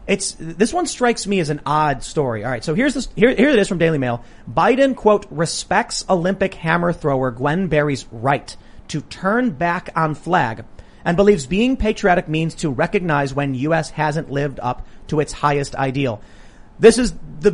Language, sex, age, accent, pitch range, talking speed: English, male, 30-49, American, 140-200 Hz, 185 wpm